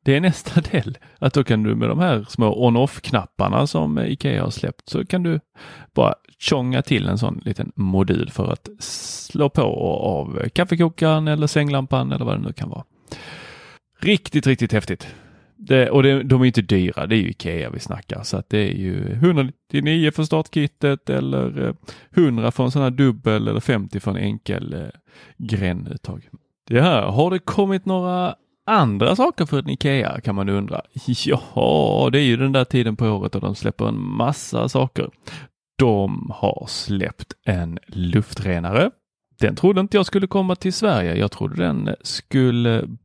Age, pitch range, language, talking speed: 30-49, 110-165 Hz, Swedish, 175 wpm